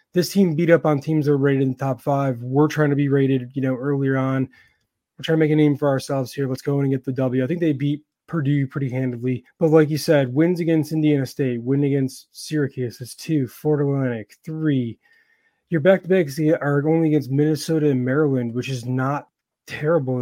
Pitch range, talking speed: 135-155 Hz, 225 wpm